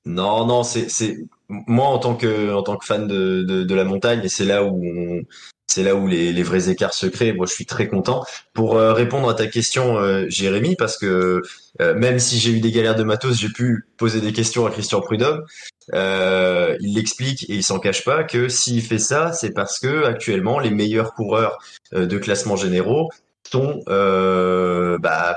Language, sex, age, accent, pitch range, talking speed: French, male, 20-39, French, 95-115 Hz, 210 wpm